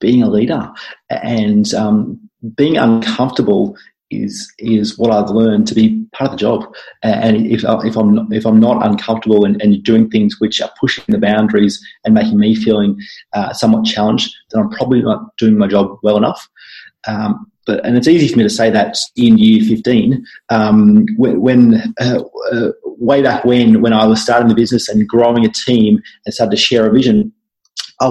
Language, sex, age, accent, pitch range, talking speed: English, male, 30-49, Australian, 110-125 Hz, 190 wpm